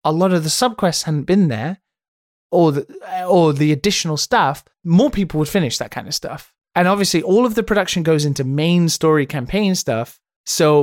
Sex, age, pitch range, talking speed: male, 20-39, 140-180 Hz, 190 wpm